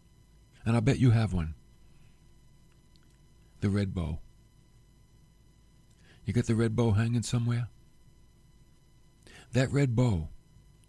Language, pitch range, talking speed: English, 110-145 Hz, 105 wpm